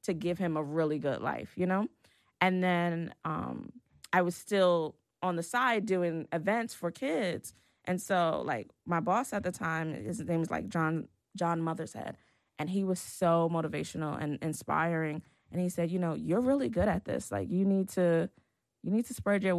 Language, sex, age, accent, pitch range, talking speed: English, female, 20-39, American, 155-185 Hz, 195 wpm